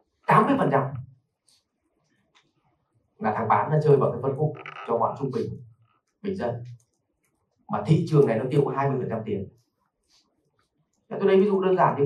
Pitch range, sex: 125-165 Hz, male